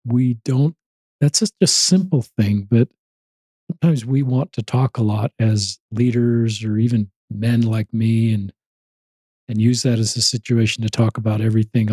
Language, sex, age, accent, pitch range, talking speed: English, male, 50-69, American, 110-130 Hz, 165 wpm